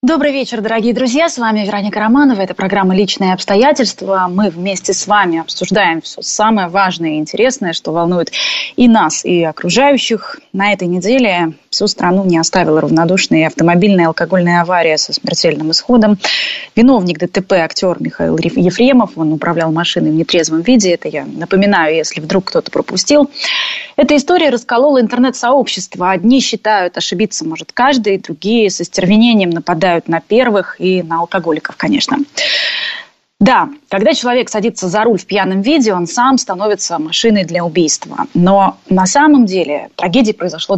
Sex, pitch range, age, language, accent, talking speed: female, 170-230 Hz, 20-39, Russian, native, 150 wpm